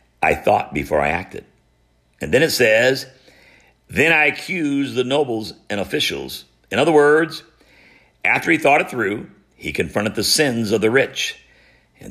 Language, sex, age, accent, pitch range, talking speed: English, male, 60-79, American, 95-140 Hz, 160 wpm